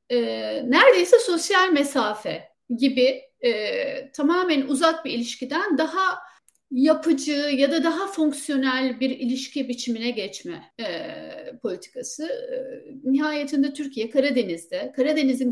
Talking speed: 95 wpm